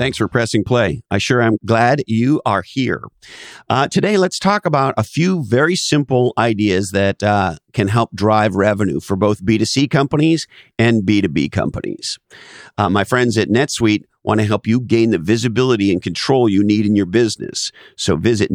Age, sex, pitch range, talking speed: 50-69, male, 100-125 Hz, 175 wpm